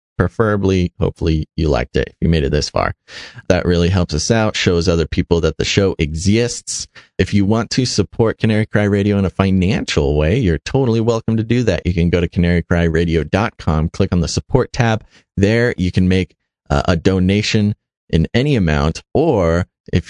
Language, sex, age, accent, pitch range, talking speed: English, male, 30-49, American, 80-100 Hz, 190 wpm